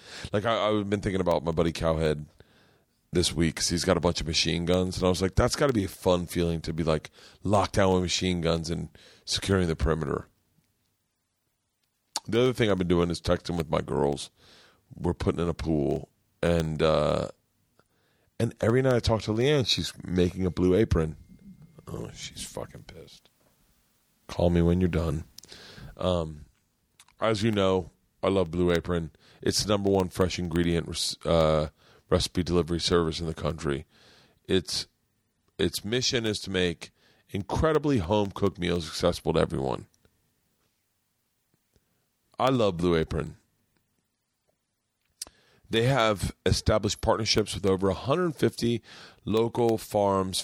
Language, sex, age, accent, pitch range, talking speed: English, male, 40-59, American, 85-105 Hz, 150 wpm